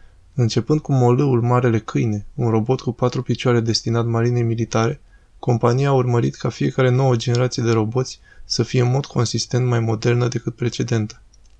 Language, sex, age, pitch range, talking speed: Romanian, male, 20-39, 115-125 Hz, 160 wpm